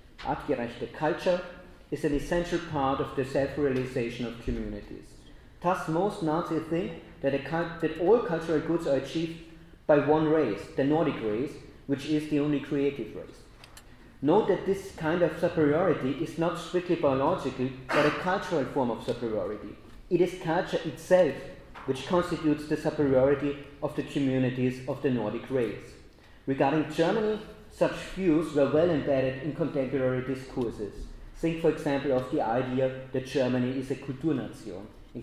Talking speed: 150 wpm